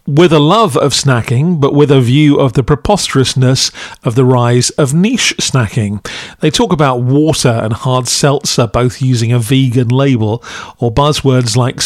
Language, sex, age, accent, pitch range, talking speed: English, male, 40-59, British, 125-150 Hz, 165 wpm